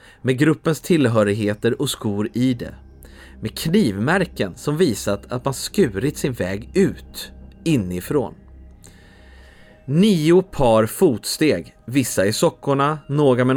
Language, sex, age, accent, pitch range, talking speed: English, male, 30-49, Swedish, 95-150 Hz, 115 wpm